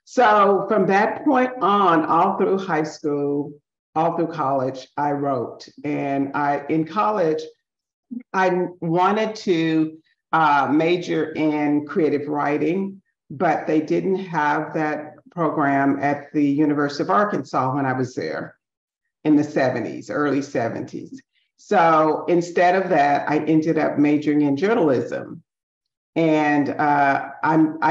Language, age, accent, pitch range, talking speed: English, 50-69, American, 145-180 Hz, 125 wpm